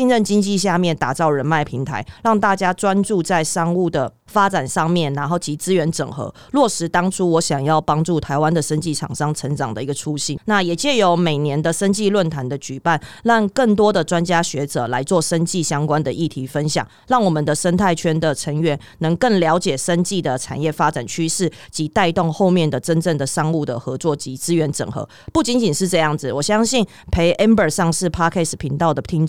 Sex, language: female, Chinese